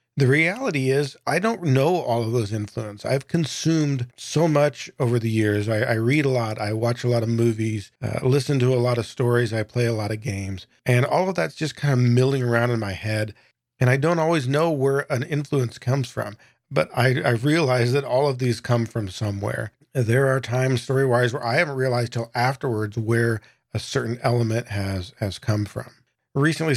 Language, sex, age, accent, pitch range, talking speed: English, male, 40-59, American, 115-130 Hz, 210 wpm